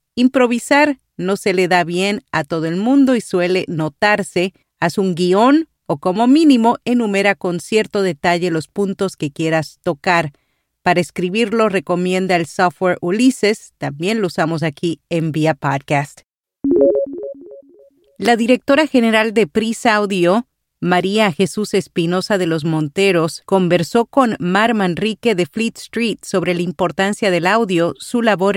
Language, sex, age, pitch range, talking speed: Spanish, female, 40-59, 175-215 Hz, 140 wpm